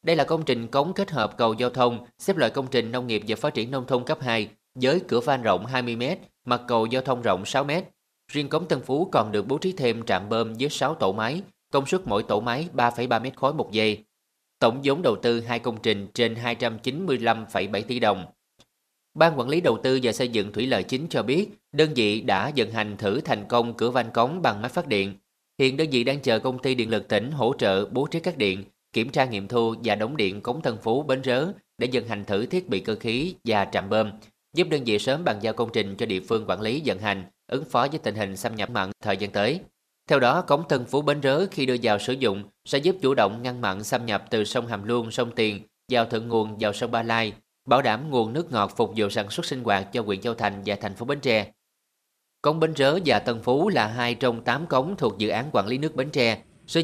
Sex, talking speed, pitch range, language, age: male, 245 wpm, 110-135 Hz, Vietnamese, 20-39